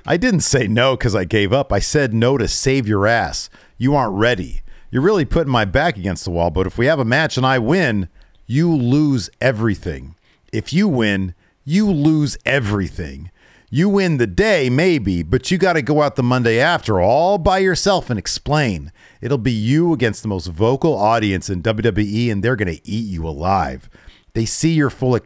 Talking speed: 200 wpm